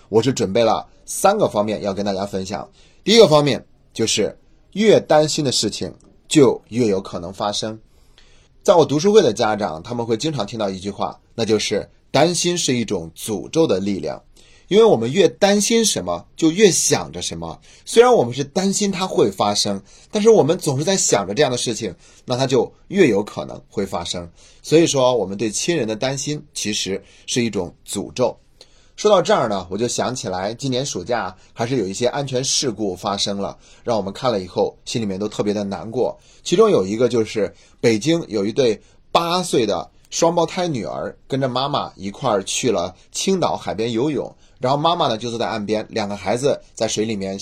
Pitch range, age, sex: 100-155 Hz, 30-49, male